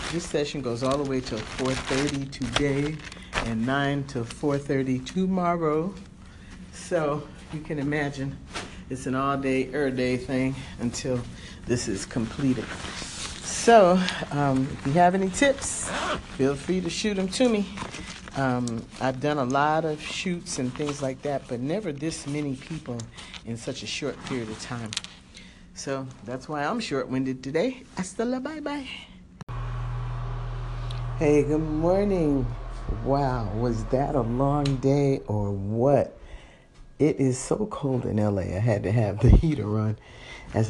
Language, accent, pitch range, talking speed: English, American, 115-150 Hz, 145 wpm